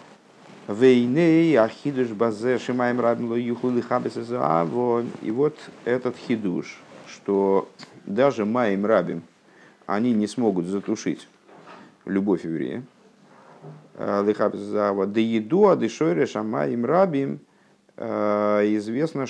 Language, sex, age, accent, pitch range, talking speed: Russian, male, 50-69, native, 95-120 Hz, 55 wpm